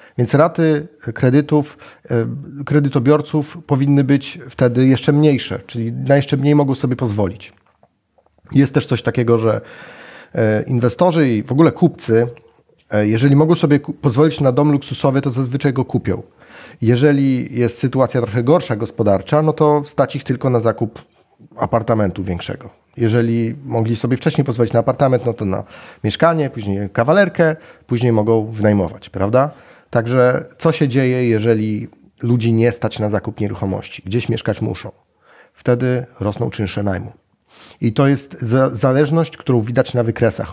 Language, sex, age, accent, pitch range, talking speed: Polish, male, 40-59, native, 115-145 Hz, 140 wpm